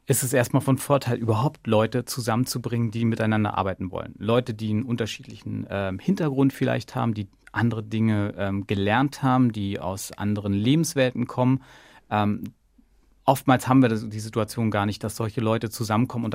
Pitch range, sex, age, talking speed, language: 110-135 Hz, male, 40-59, 160 wpm, German